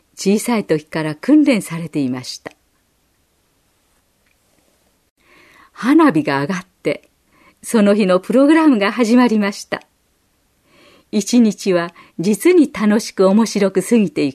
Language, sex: Japanese, female